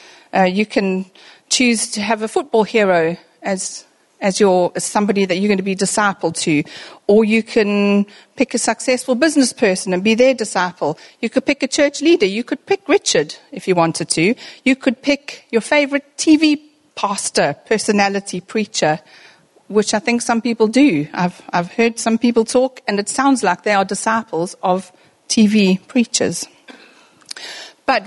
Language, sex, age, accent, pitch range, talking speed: English, female, 40-59, British, 195-260 Hz, 170 wpm